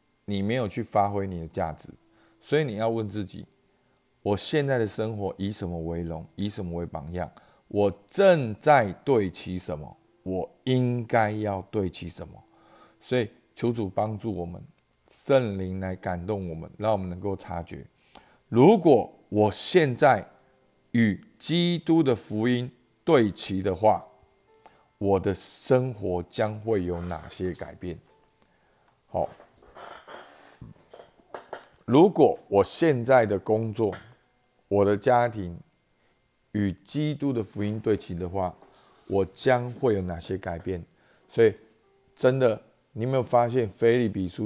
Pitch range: 95-125 Hz